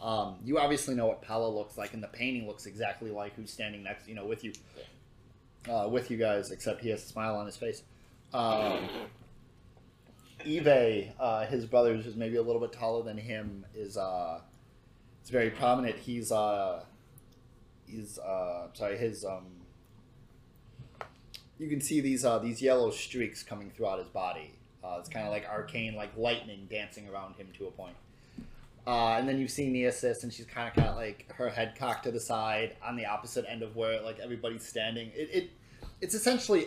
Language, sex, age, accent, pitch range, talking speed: English, male, 20-39, American, 110-130 Hz, 190 wpm